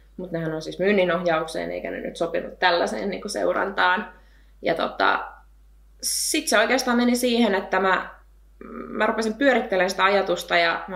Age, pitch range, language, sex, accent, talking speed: 20-39, 170-210 Hz, Finnish, female, native, 155 wpm